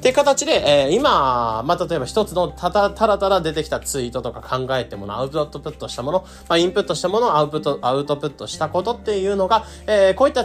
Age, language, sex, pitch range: 20-39, Japanese, male, 130-205 Hz